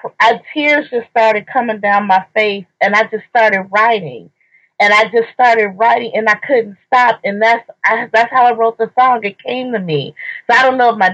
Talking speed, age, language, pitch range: 215 wpm, 30-49, English, 195-235 Hz